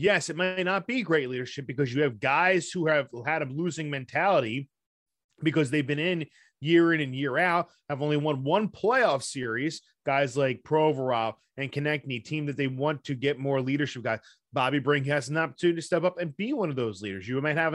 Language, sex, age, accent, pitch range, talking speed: English, male, 20-39, American, 140-195 Hz, 215 wpm